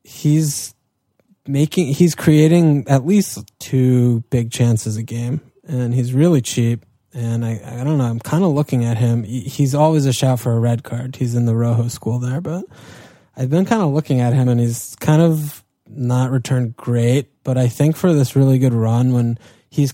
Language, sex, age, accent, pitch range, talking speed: English, male, 20-39, American, 120-140 Hz, 200 wpm